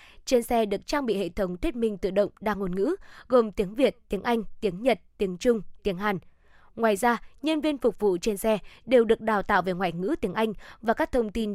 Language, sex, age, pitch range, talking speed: Vietnamese, female, 20-39, 200-245 Hz, 240 wpm